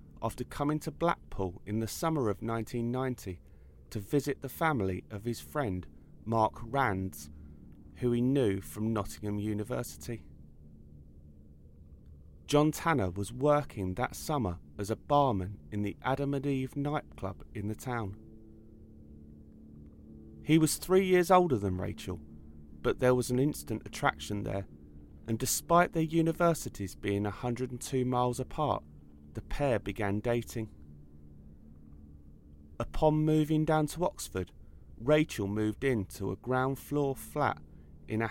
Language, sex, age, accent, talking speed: English, male, 30-49, British, 125 wpm